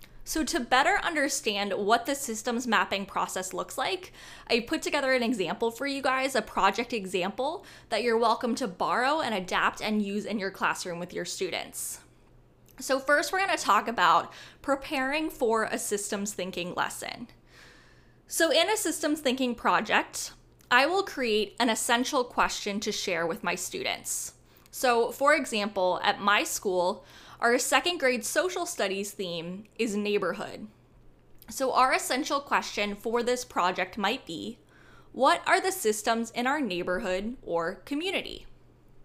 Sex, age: female, 10-29